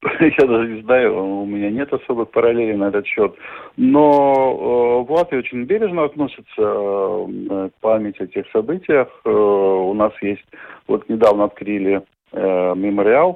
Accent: native